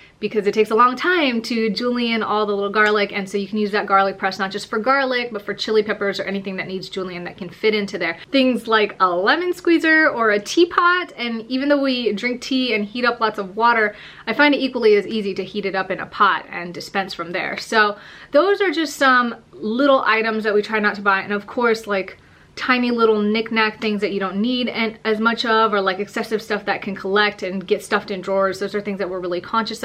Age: 30-49